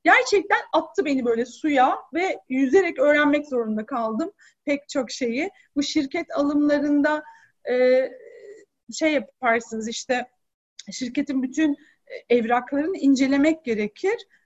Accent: native